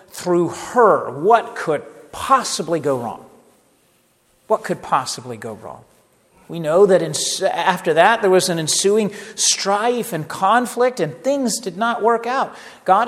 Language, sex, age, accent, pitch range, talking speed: English, male, 50-69, American, 185-250 Hz, 140 wpm